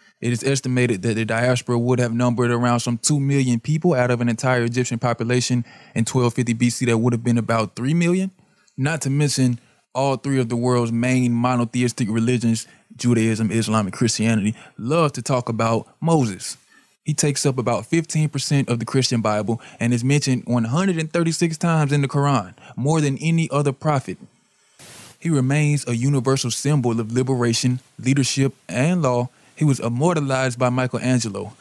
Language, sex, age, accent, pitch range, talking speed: English, male, 20-39, American, 120-145 Hz, 165 wpm